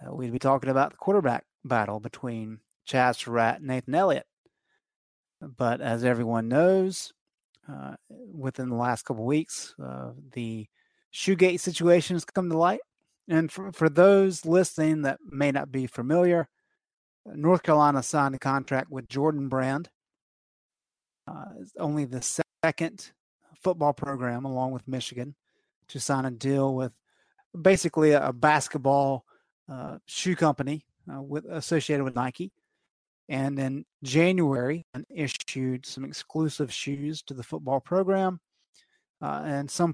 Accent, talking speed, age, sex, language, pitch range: American, 135 wpm, 30-49, male, English, 125-165 Hz